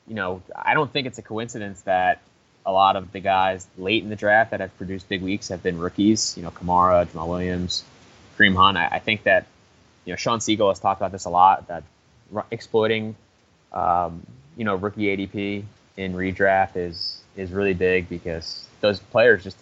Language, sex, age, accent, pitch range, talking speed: English, male, 20-39, American, 90-105 Hz, 195 wpm